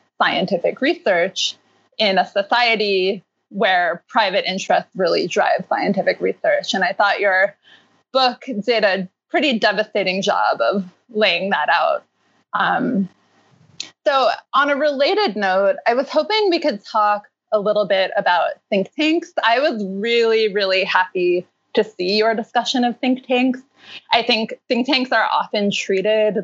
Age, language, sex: 20-39, English, female